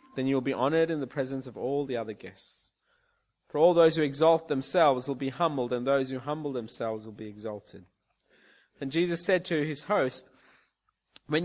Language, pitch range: English, 130-170 Hz